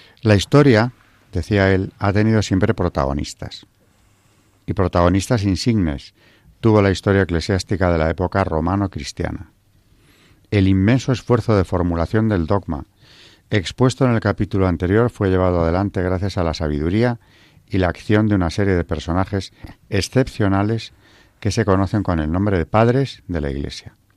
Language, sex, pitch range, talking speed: Spanish, male, 90-110 Hz, 145 wpm